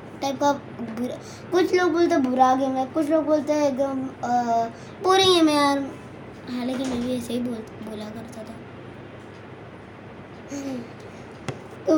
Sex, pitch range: male, 245-305 Hz